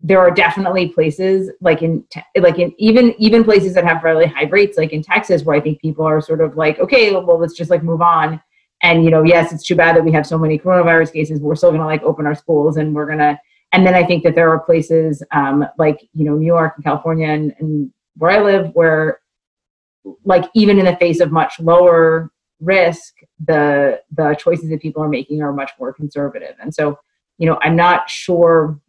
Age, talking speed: 30-49, 230 wpm